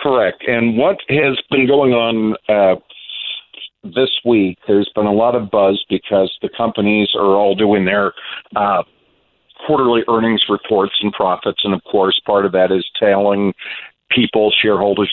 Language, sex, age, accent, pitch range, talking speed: English, male, 50-69, American, 95-110 Hz, 155 wpm